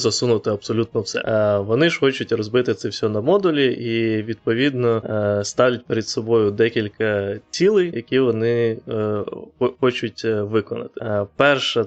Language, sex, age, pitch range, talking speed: Ukrainian, male, 20-39, 105-120 Hz, 115 wpm